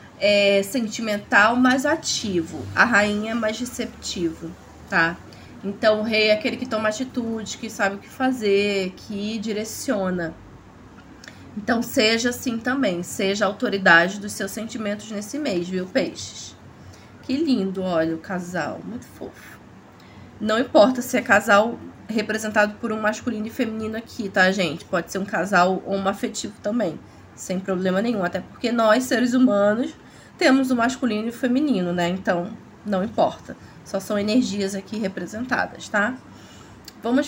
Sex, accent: female, Brazilian